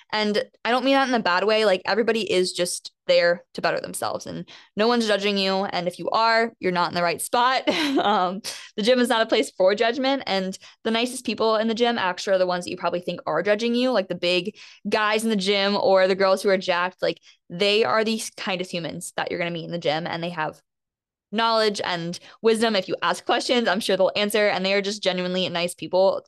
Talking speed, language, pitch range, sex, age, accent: 245 wpm, English, 175-225 Hz, female, 20-39, American